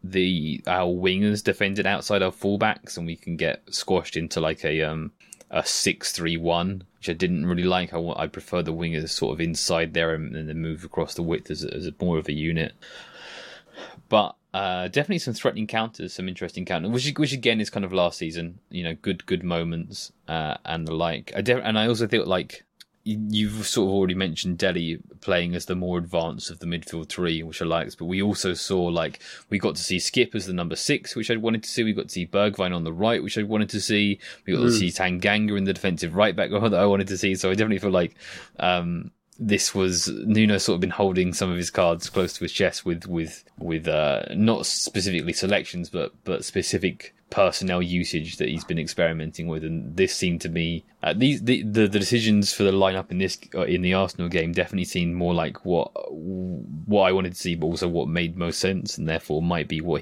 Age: 20-39